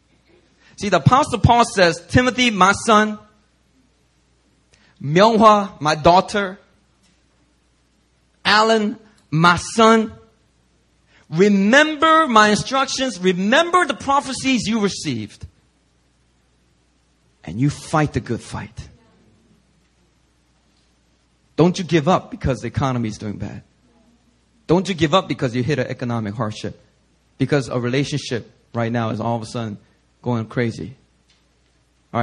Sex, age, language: male, 30-49, English